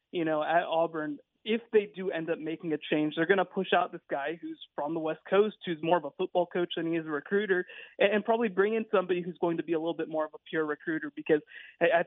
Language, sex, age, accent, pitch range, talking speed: English, male, 20-39, American, 160-200 Hz, 270 wpm